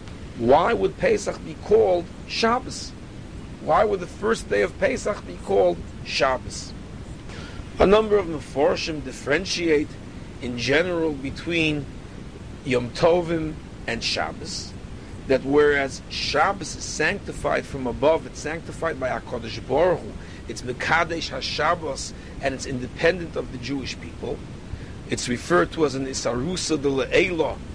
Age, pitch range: 50-69, 120-160 Hz